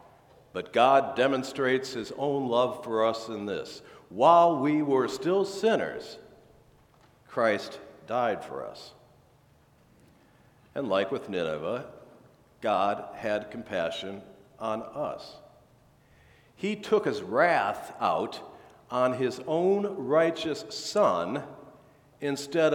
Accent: American